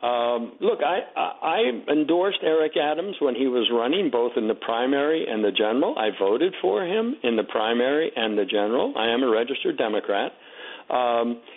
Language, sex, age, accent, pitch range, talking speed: English, male, 60-79, American, 125-195 Hz, 175 wpm